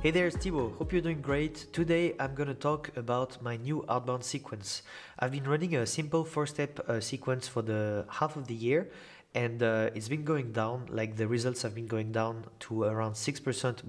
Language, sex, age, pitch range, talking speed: English, male, 30-49, 110-135 Hz, 200 wpm